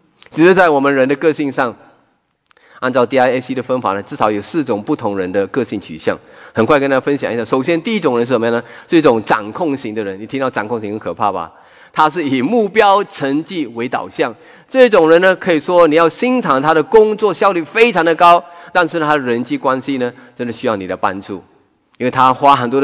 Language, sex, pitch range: English, male, 125-195 Hz